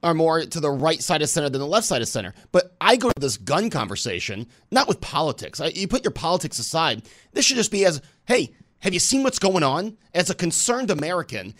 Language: English